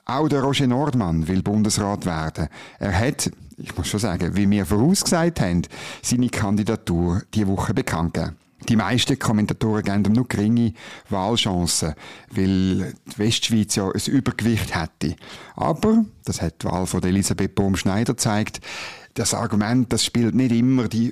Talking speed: 150 wpm